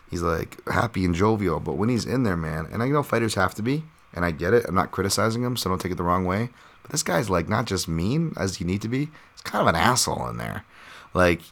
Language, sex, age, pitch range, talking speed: English, male, 30-49, 85-100 Hz, 275 wpm